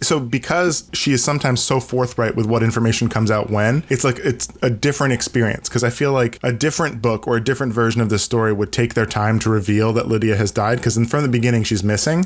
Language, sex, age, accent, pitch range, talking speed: English, male, 10-29, American, 110-130 Hz, 240 wpm